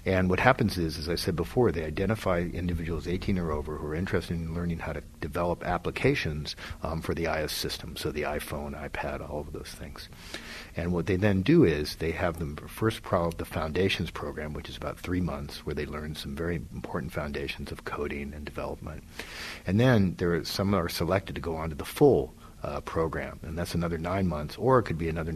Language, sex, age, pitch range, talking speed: English, male, 60-79, 80-95 Hz, 215 wpm